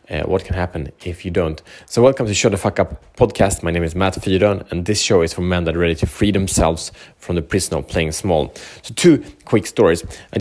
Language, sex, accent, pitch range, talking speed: Swedish, male, Norwegian, 90-105 Hz, 250 wpm